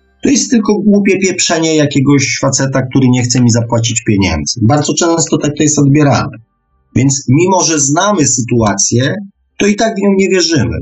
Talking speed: 170 wpm